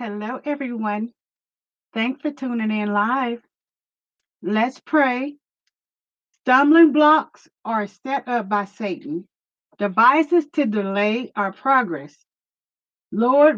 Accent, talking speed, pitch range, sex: American, 95 wpm, 205-280 Hz, female